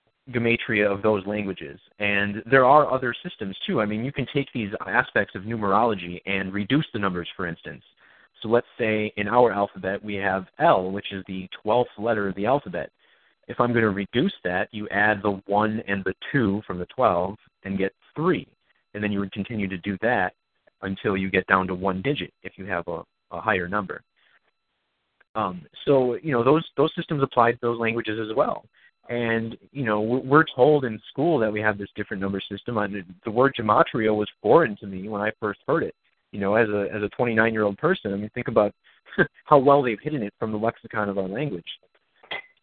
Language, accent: English, American